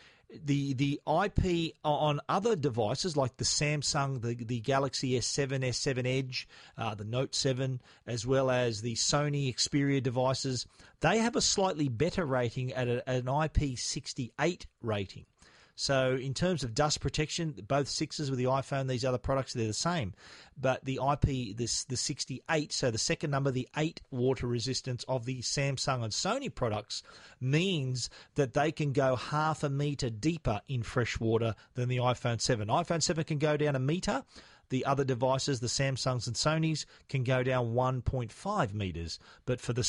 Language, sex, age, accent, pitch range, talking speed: English, male, 40-59, Australian, 125-150 Hz, 170 wpm